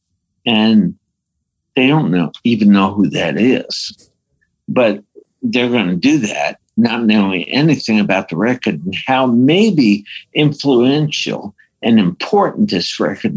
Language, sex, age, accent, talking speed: English, male, 60-79, American, 130 wpm